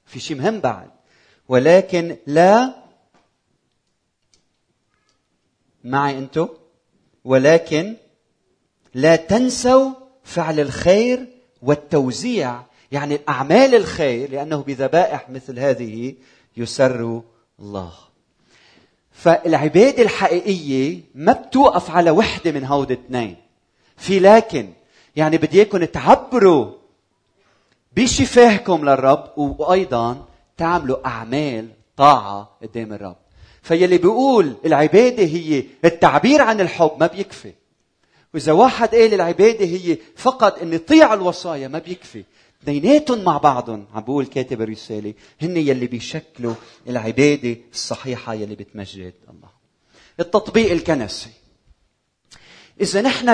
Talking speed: 95 wpm